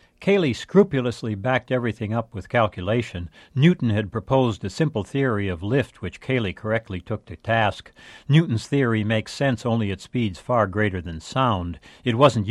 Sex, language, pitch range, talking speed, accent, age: male, English, 100-135 Hz, 165 wpm, American, 60-79